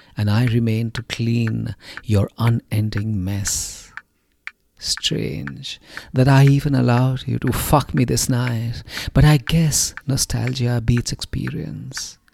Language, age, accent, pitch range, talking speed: English, 50-69, Indian, 115-140 Hz, 120 wpm